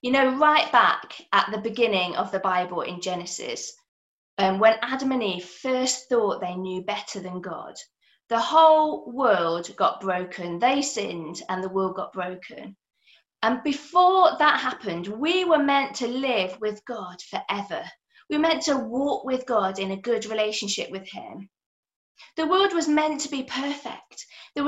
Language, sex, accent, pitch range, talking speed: English, female, British, 230-310 Hz, 170 wpm